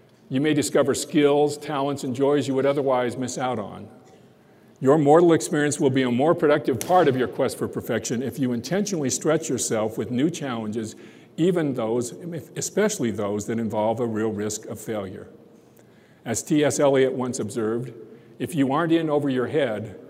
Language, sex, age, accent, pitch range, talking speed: English, male, 50-69, American, 120-155 Hz, 175 wpm